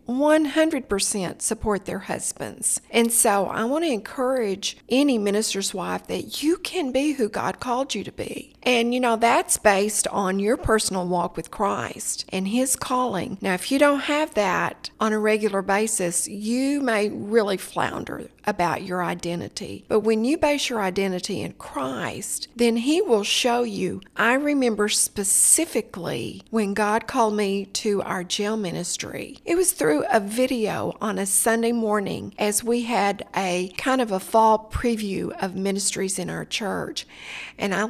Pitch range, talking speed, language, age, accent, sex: 195-250 Hz, 160 wpm, English, 40-59, American, female